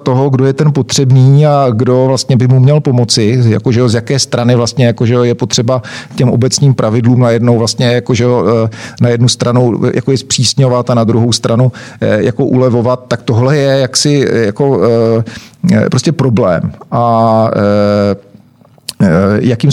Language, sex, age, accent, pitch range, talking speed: Czech, male, 50-69, native, 120-135 Hz, 145 wpm